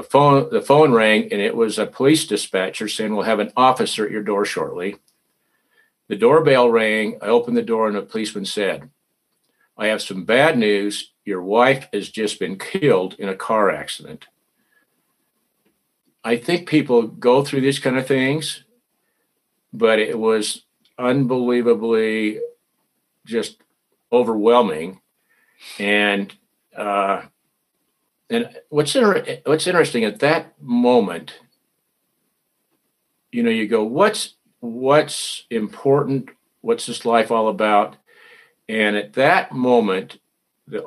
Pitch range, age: 105-150 Hz, 50-69